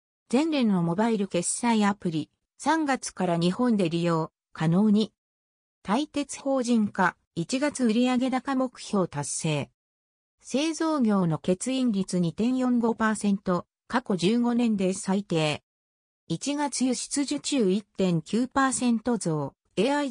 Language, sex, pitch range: Japanese, female, 175-255 Hz